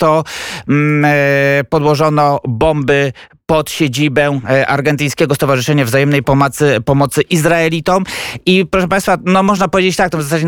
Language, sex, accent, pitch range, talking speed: Polish, male, native, 140-165 Hz, 120 wpm